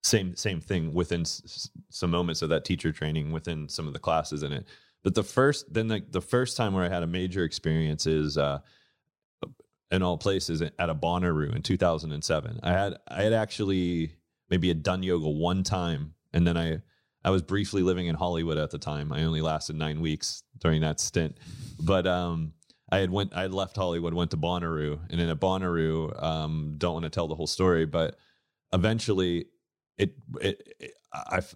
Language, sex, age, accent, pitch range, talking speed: English, male, 30-49, American, 80-95 Hz, 200 wpm